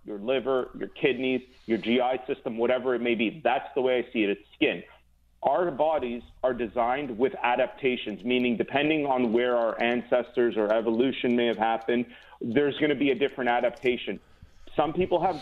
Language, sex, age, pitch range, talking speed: English, male, 40-59, 125-155 Hz, 180 wpm